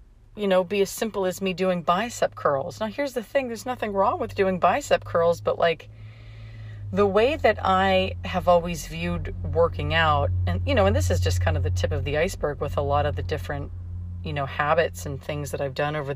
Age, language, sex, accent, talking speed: 30-49, English, female, American, 225 wpm